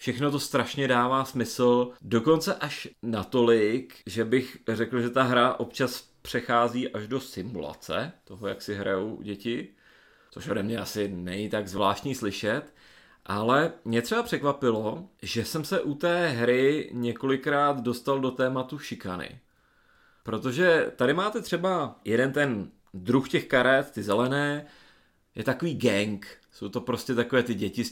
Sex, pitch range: male, 105-145 Hz